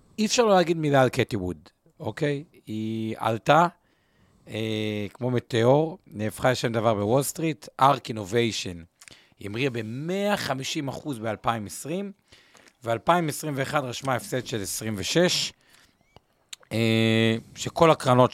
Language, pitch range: Hebrew, 105-140 Hz